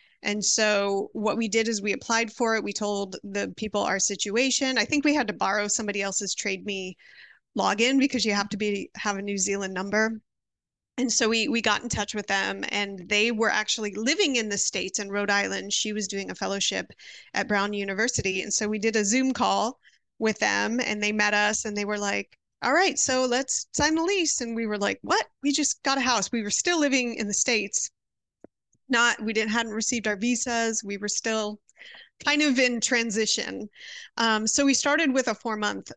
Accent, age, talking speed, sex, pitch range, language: American, 30-49, 210 wpm, female, 200-230 Hz, English